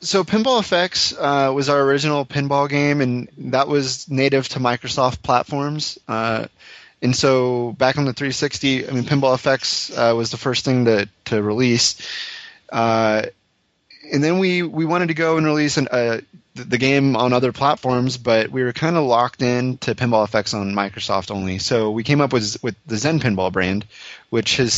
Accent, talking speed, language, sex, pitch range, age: American, 185 wpm, English, male, 105-135 Hz, 20-39